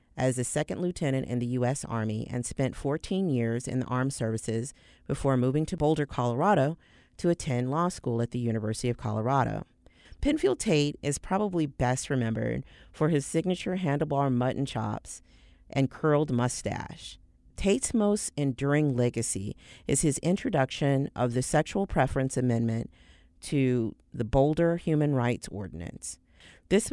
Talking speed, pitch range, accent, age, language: 145 wpm, 115-150 Hz, American, 40-59, English